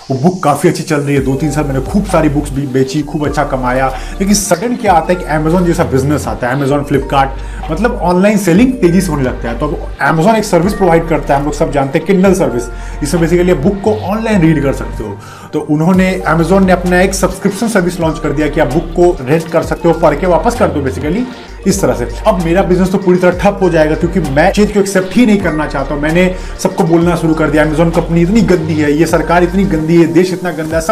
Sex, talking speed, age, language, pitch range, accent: male, 200 wpm, 30-49, Hindi, 155-190 Hz, native